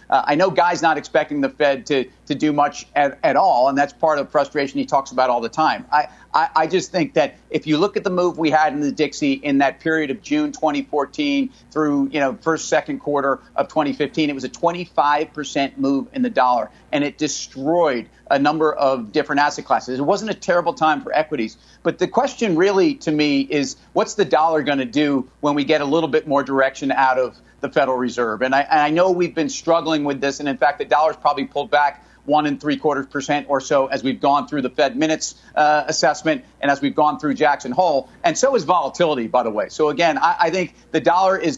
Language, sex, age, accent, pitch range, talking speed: English, male, 40-59, American, 140-165 Hz, 235 wpm